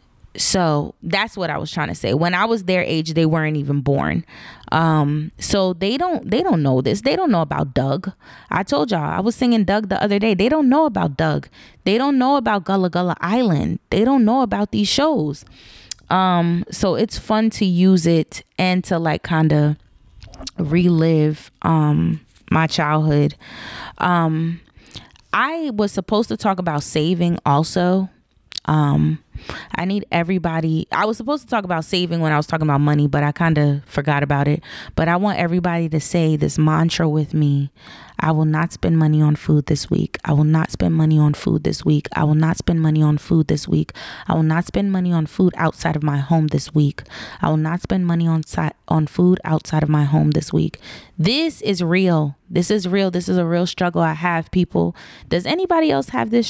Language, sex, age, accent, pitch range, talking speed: English, female, 20-39, American, 150-190 Hz, 205 wpm